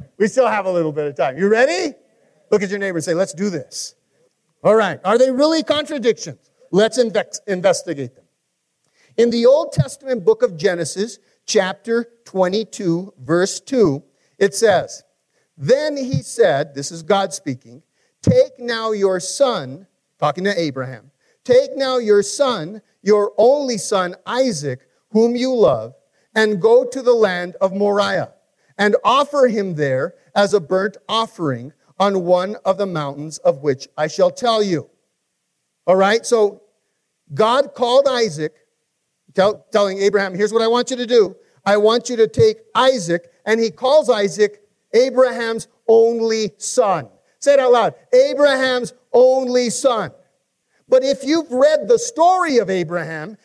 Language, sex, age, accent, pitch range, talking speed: English, male, 50-69, American, 185-255 Hz, 150 wpm